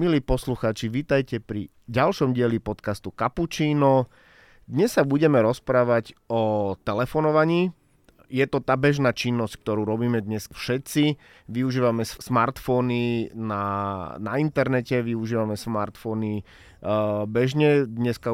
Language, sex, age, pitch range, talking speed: Slovak, male, 30-49, 110-140 Hz, 110 wpm